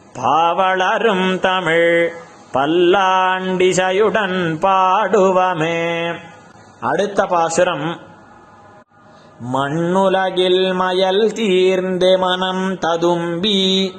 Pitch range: 175-190 Hz